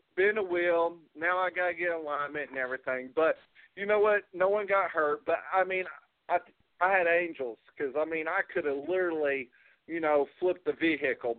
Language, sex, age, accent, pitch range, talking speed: English, male, 50-69, American, 160-240 Hz, 200 wpm